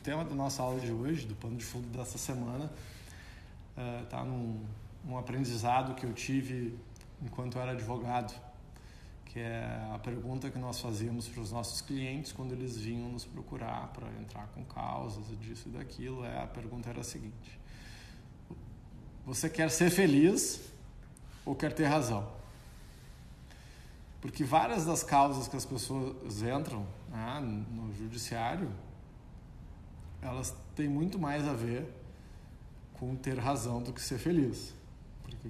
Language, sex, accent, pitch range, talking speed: Portuguese, male, Brazilian, 115-150 Hz, 145 wpm